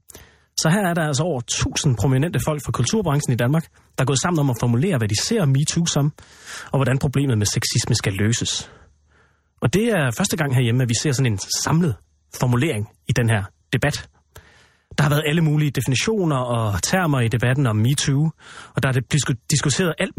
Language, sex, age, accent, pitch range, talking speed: Danish, male, 30-49, native, 110-150 Hz, 195 wpm